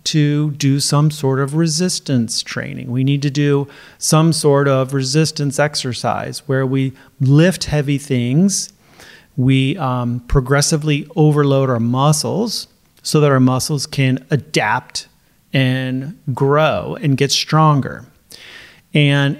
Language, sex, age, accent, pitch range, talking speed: English, male, 40-59, American, 130-150 Hz, 120 wpm